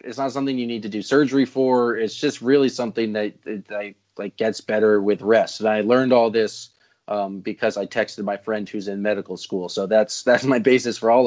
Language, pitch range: English, 105-125 Hz